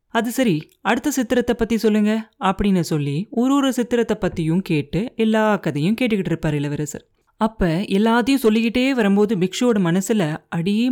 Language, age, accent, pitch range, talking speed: Tamil, 30-49, native, 170-230 Hz, 135 wpm